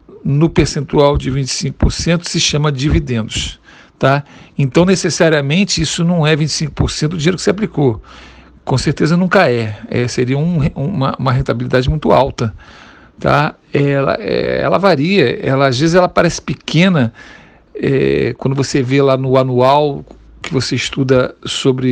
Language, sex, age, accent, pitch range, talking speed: Portuguese, male, 50-69, Brazilian, 135-170 Hz, 130 wpm